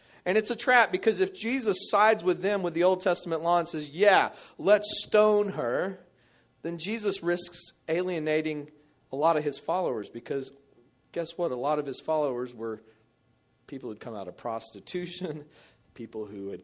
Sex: male